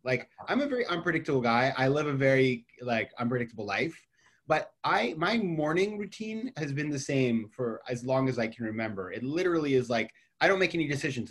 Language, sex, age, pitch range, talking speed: Persian, male, 20-39, 120-165 Hz, 200 wpm